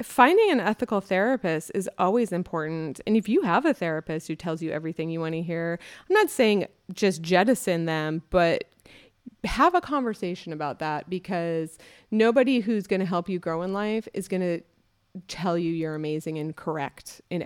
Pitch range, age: 165-200 Hz, 30-49